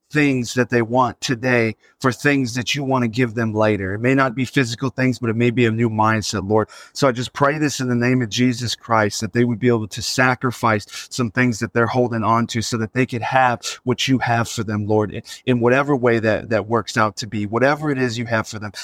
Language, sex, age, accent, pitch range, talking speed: English, male, 30-49, American, 115-135 Hz, 255 wpm